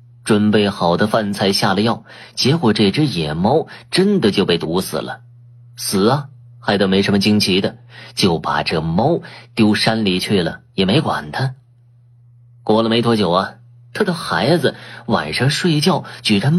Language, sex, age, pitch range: Chinese, male, 30-49, 105-130 Hz